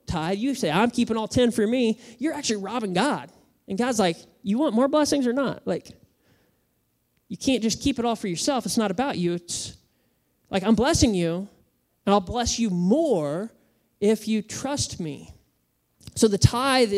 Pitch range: 175-235 Hz